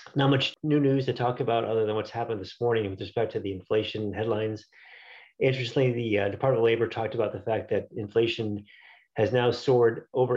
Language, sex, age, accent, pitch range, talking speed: English, male, 30-49, American, 105-120 Hz, 205 wpm